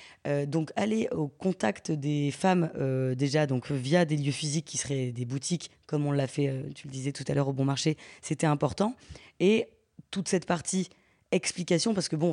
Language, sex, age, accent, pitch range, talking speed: French, female, 20-39, French, 145-175 Hz, 205 wpm